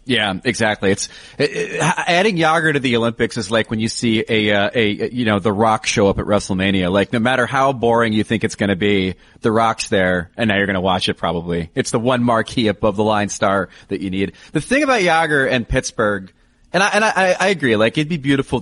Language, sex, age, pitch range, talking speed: English, male, 30-49, 105-125 Hz, 240 wpm